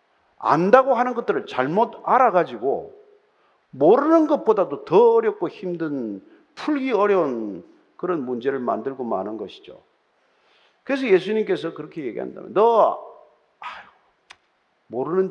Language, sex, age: Korean, male, 50-69